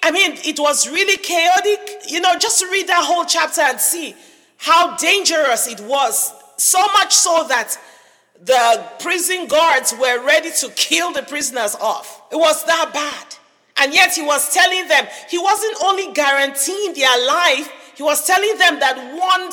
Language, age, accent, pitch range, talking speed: English, 40-59, Nigerian, 300-380 Hz, 170 wpm